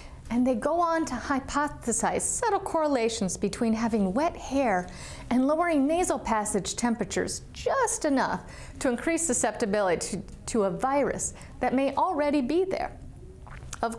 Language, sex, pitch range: English, female, 205-290 Hz